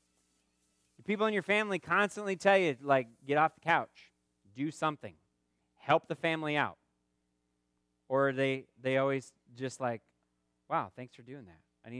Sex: male